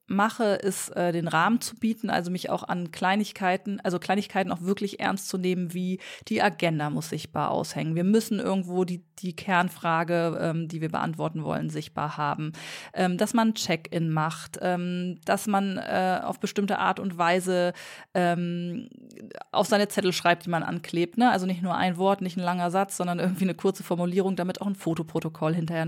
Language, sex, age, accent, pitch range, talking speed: German, female, 20-39, German, 175-200 Hz, 185 wpm